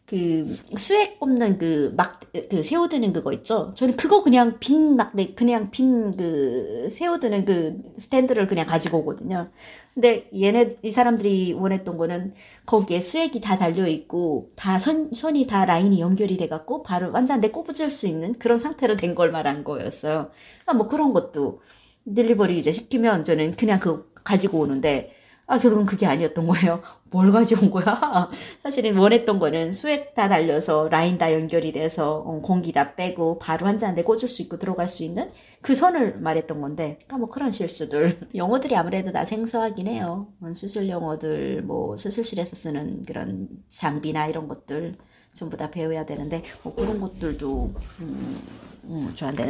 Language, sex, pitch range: Korean, female, 165-235 Hz